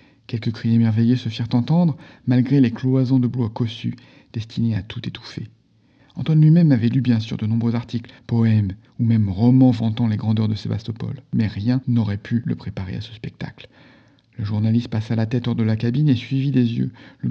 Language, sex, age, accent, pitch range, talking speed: French, male, 50-69, French, 110-130 Hz, 200 wpm